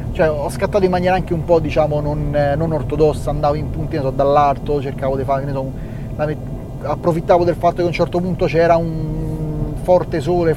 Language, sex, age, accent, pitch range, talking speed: Italian, male, 30-49, native, 130-155 Hz, 200 wpm